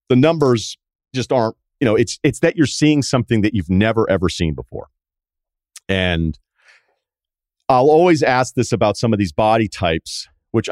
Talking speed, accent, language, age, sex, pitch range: 170 wpm, American, English, 40-59, male, 90-125 Hz